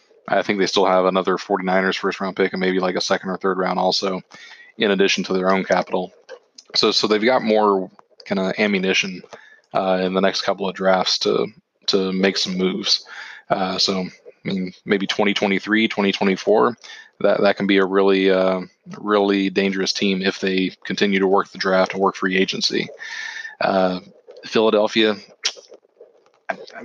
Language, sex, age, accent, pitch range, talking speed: English, male, 20-39, American, 95-105 Hz, 180 wpm